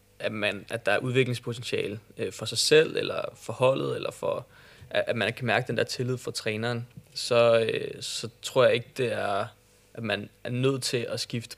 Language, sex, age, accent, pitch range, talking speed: Danish, male, 20-39, native, 115-135 Hz, 190 wpm